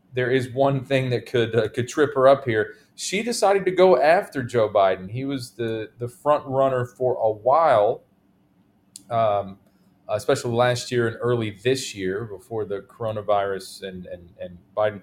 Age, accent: 30-49, American